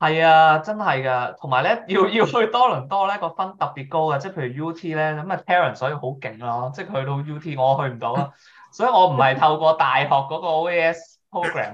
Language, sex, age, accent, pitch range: Chinese, male, 20-39, native, 130-165 Hz